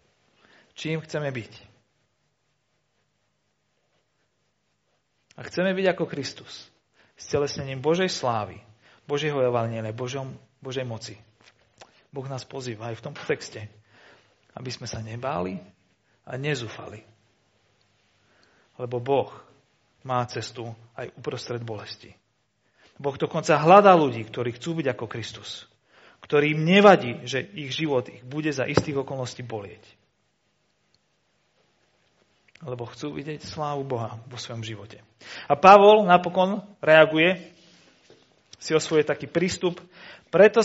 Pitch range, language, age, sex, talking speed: 120-180 Hz, Slovak, 40-59, male, 110 wpm